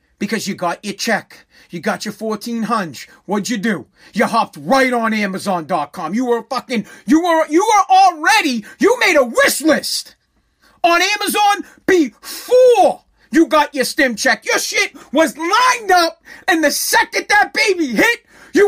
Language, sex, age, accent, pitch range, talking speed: English, male, 40-59, American, 245-345 Hz, 160 wpm